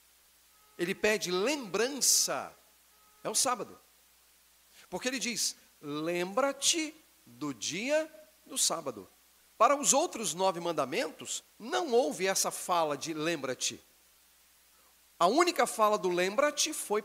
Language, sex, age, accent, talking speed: Portuguese, male, 40-59, Brazilian, 110 wpm